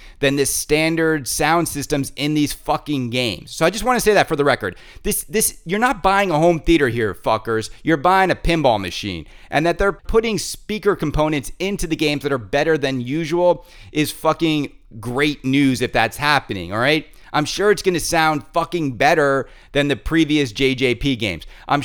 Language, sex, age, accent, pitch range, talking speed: English, male, 30-49, American, 135-175 Hz, 190 wpm